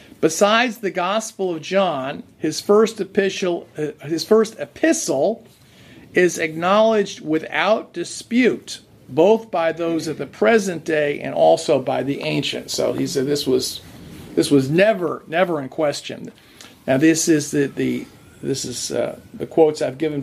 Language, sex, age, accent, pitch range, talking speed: English, male, 50-69, American, 135-180 Hz, 150 wpm